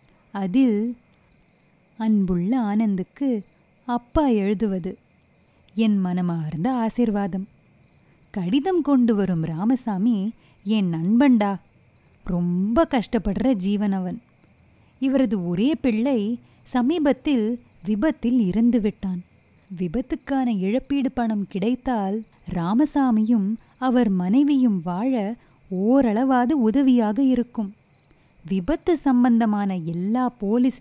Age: 20-39